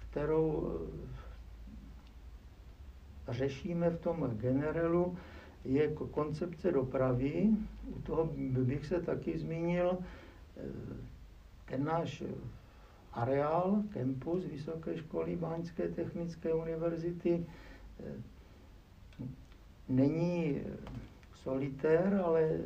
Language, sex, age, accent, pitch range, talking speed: Czech, male, 60-79, native, 130-165 Hz, 65 wpm